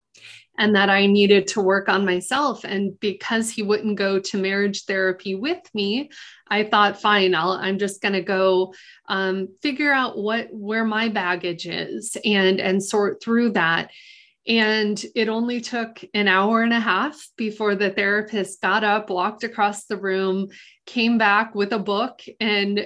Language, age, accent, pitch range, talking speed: English, 20-39, American, 195-230 Hz, 170 wpm